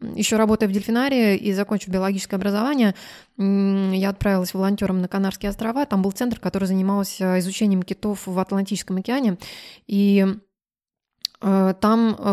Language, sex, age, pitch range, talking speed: Russian, female, 20-39, 185-220 Hz, 125 wpm